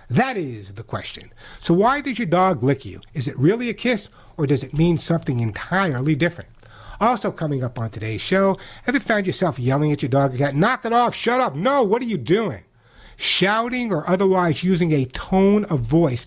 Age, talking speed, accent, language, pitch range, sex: 60-79, 205 wpm, American, English, 125-185 Hz, male